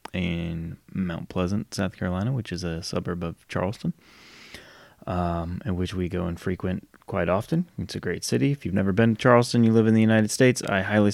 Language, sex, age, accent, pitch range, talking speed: English, male, 20-39, American, 85-110 Hz, 205 wpm